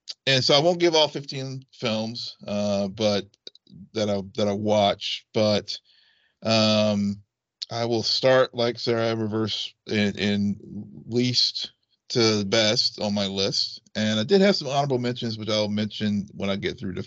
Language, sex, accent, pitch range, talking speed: English, male, American, 105-130 Hz, 165 wpm